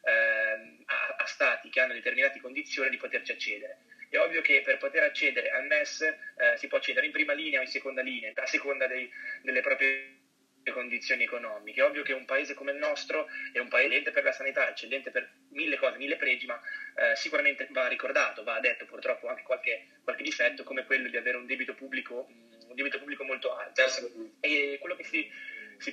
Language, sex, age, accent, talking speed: Italian, male, 20-39, native, 195 wpm